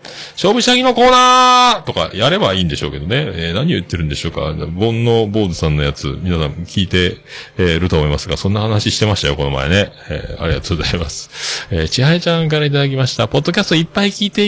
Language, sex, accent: Japanese, male, native